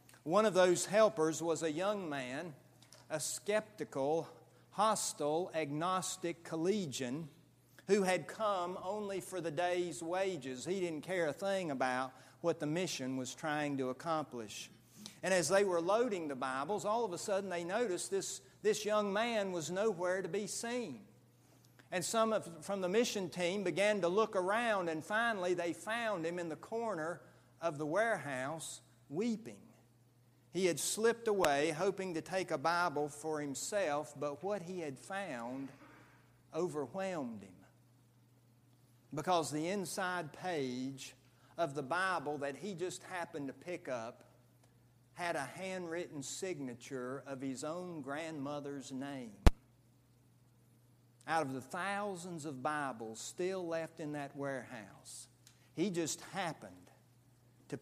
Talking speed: 140 wpm